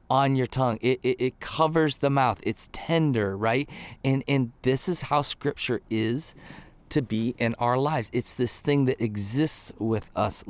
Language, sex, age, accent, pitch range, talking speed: English, male, 30-49, American, 115-145 Hz, 175 wpm